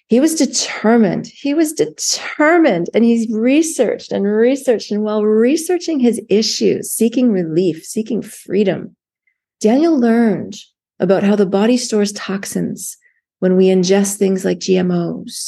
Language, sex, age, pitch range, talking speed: English, female, 30-49, 195-245 Hz, 130 wpm